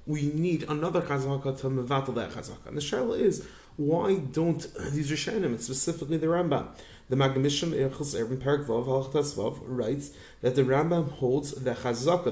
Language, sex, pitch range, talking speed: English, male, 135-170 Hz, 170 wpm